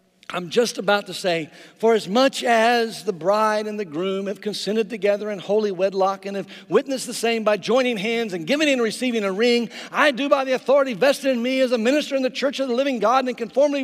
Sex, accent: male, American